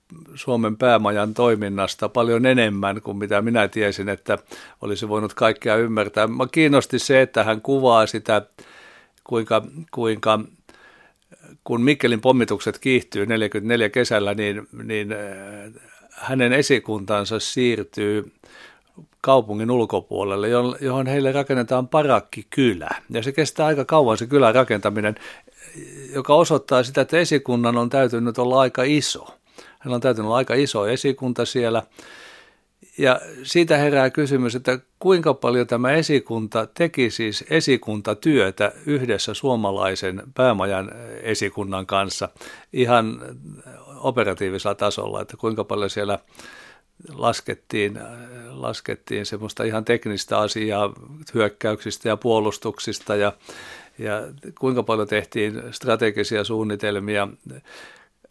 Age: 60-79